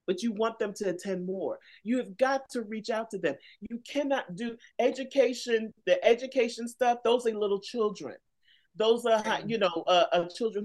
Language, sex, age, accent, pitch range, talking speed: English, male, 30-49, American, 190-270 Hz, 185 wpm